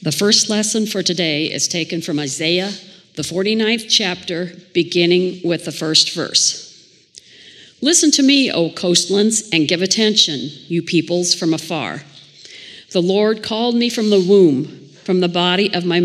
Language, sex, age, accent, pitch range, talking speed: English, female, 50-69, American, 165-210 Hz, 155 wpm